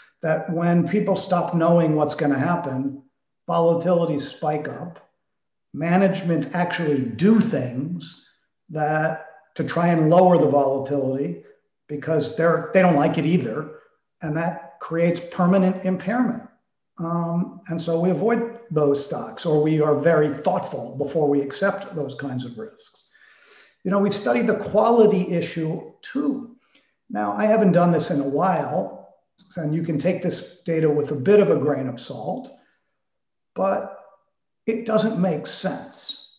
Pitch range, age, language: 150-190 Hz, 50-69, English